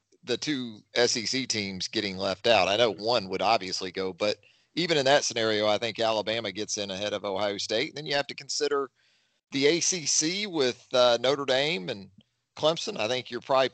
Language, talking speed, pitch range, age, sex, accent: English, 190 wpm, 115-150 Hz, 40-59, male, American